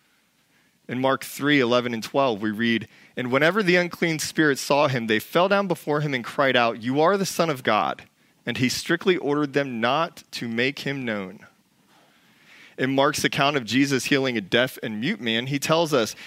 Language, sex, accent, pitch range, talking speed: English, male, American, 120-160 Hz, 195 wpm